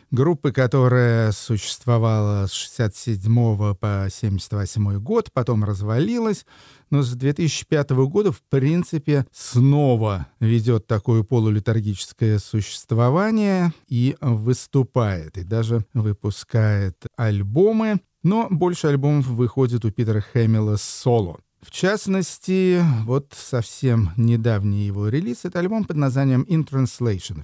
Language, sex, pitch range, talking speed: Russian, male, 105-135 Hz, 105 wpm